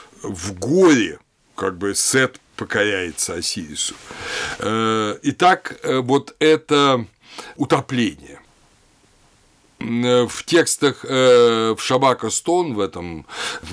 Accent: native